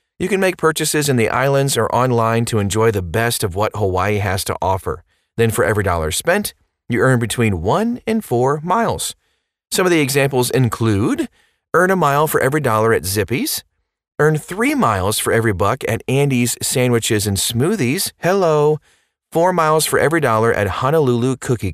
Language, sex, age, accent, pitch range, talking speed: English, male, 30-49, American, 110-150 Hz, 175 wpm